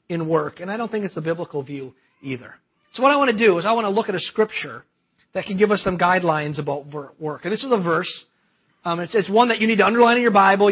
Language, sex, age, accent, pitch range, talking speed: English, male, 40-59, American, 165-210 Hz, 275 wpm